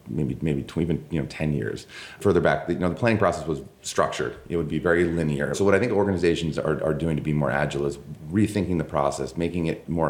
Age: 30-49